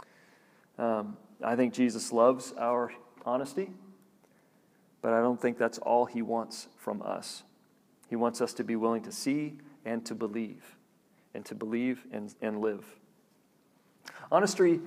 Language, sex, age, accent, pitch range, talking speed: English, male, 40-59, American, 120-150 Hz, 140 wpm